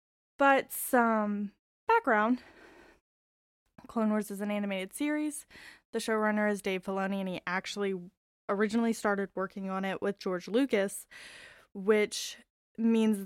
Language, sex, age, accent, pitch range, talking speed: English, female, 10-29, American, 200-250 Hz, 120 wpm